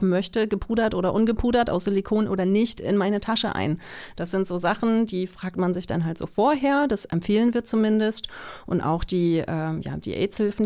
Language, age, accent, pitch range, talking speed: German, 30-49, German, 175-200 Hz, 185 wpm